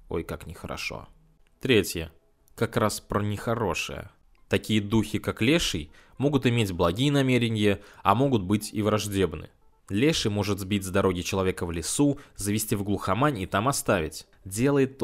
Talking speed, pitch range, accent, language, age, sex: 145 wpm, 95-120 Hz, native, Russian, 20-39, male